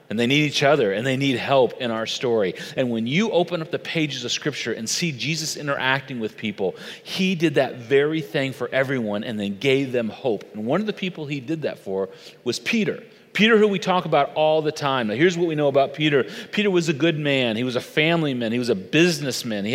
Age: 40-59